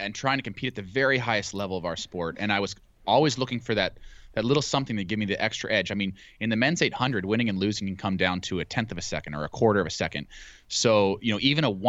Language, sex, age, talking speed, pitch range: English, male, 20-39, 290 wpm, 95-120 Hz